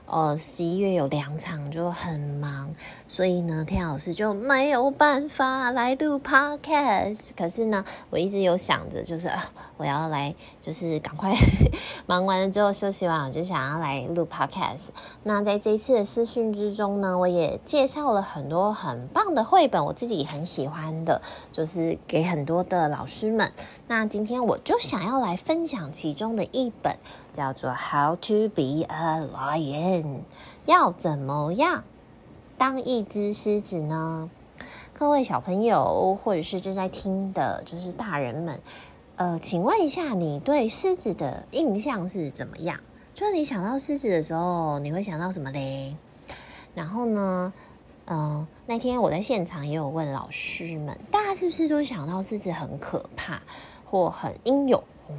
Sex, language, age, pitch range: female, Chinese, 20-39, 160-230 Hz